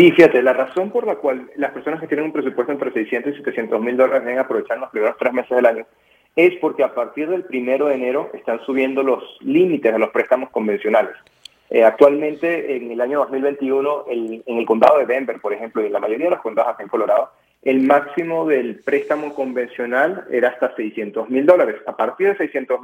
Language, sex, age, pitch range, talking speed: English, male, 30-49, 125-150 Hz, 215 wpm